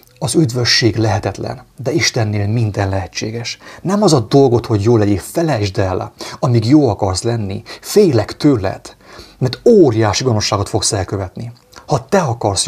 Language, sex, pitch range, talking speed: English, male, 105-130 Hz, 140 wpm